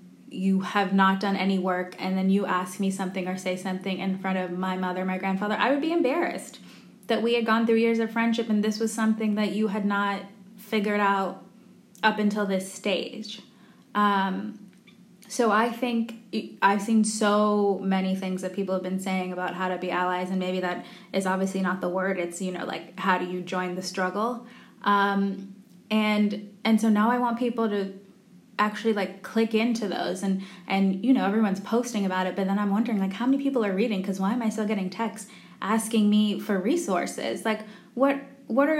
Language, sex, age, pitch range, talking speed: English, female, 20-39, 190-225 Hz, 205 wpm